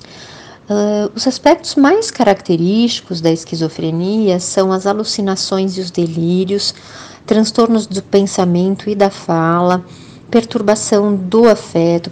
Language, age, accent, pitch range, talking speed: Portuguese, 40-59, Brazilian, 175-220 Hz, 105 wpm